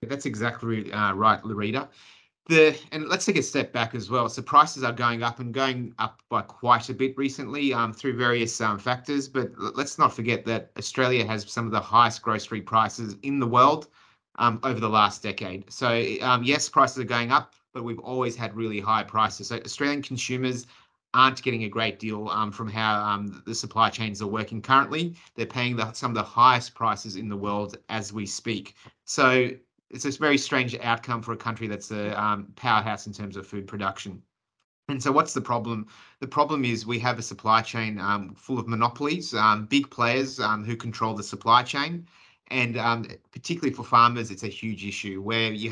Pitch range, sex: 105-130 Hz, male